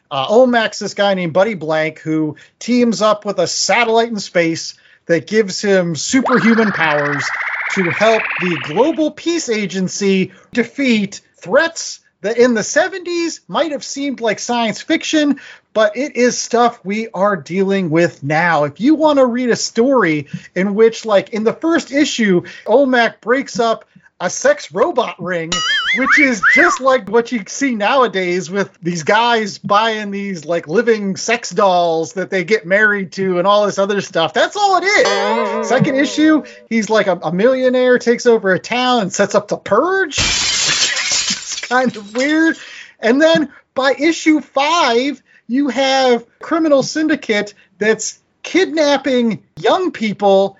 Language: English